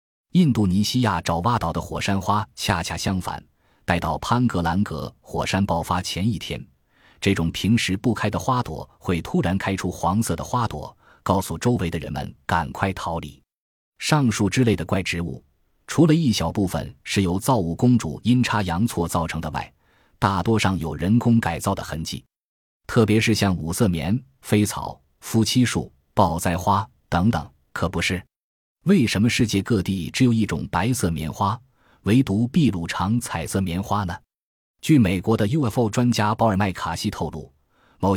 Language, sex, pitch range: Chinese, male, 85-115 Hz